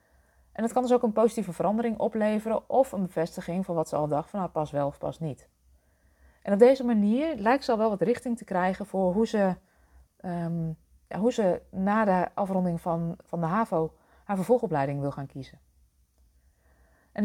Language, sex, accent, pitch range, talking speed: Dutch, female, Dutch, 145-200 Hz, 180 wpm